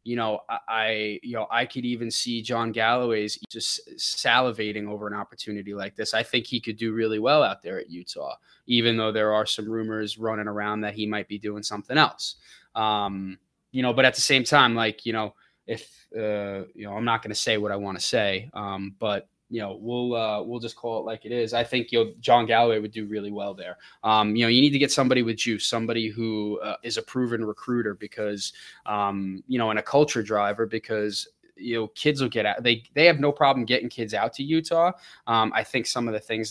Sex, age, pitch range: male, 20-39, 105-120 Hz